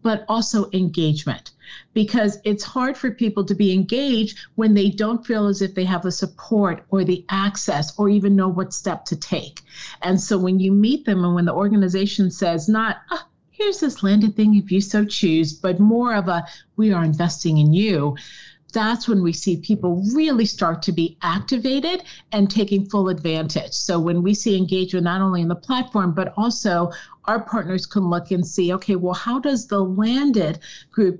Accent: American